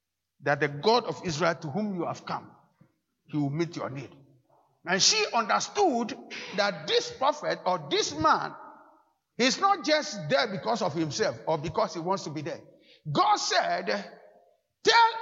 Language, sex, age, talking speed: English, male, 50-69, 160 wpm